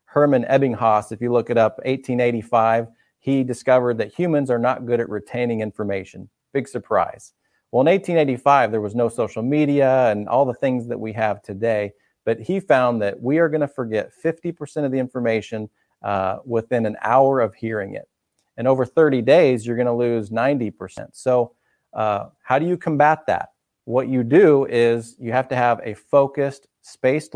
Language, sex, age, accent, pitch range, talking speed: English, male, 40-59, American, 115-135 Hz, 180 wpm